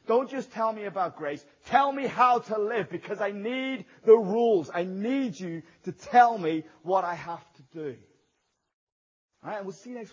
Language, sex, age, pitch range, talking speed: English, male, 30-49, 160-240 Hz, 190 wpm